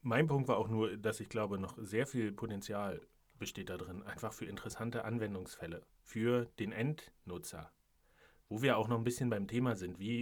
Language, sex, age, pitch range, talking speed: German, male, 40-59, 110-145 Hz, 190 wpm